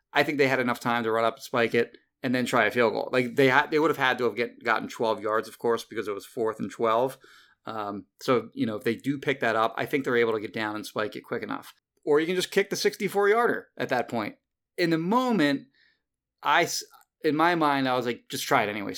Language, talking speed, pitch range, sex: English, 270 wpm, 115-135 Hz, male